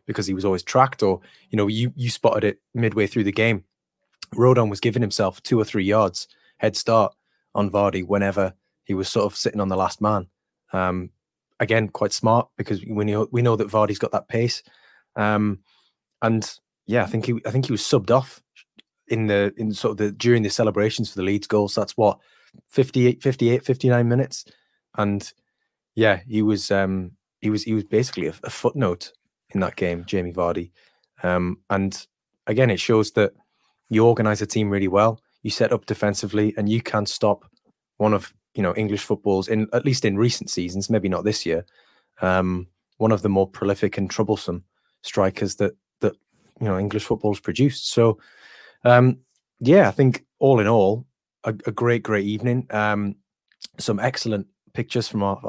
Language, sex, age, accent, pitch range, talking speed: English, male, 20-39, British, 100-115 Hz, 185 wpm